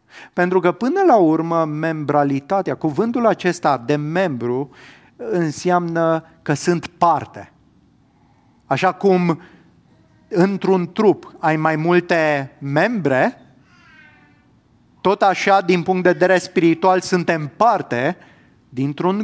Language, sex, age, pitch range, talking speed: English, male, 30-49, 150-195 Hz, 100 wpm